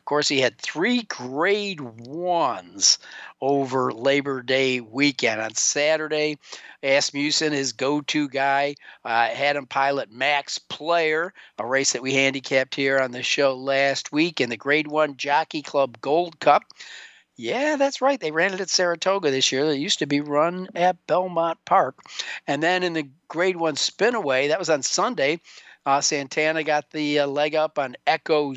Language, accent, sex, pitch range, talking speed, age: English, American, male, 135-160 Hz, 170 wpm, 50-69